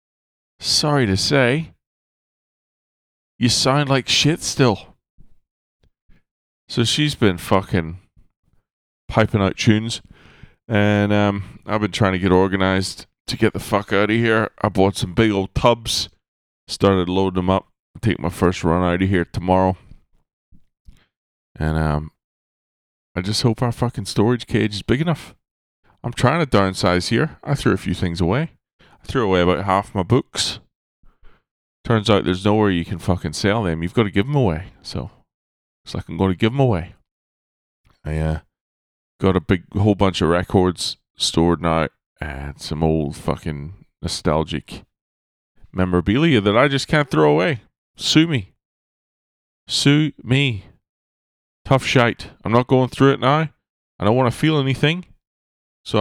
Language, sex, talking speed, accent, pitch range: English, male, 155 wpm, American, 85-120 Hz